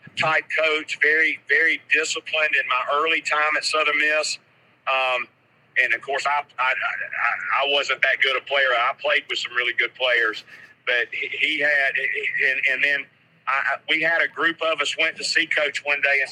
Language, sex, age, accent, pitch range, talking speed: English, male, 50-69, American, 140-165 Hz, 190 wpm